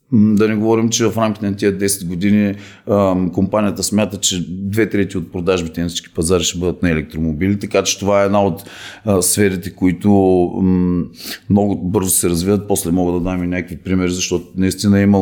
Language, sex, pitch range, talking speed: Bulgarian, male, 95-115 Hz, 180 wpm